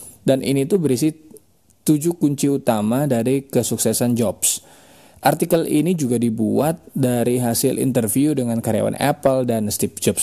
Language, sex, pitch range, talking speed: Indonesian, male, 125-165 Hz, 135 wpm